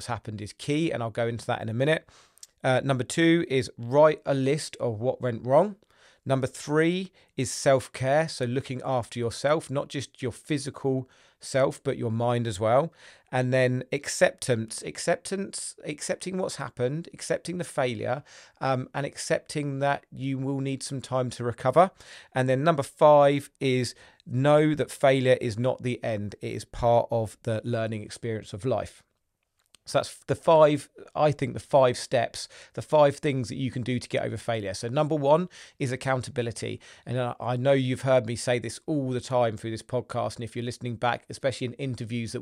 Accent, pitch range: British, 115-140 Hz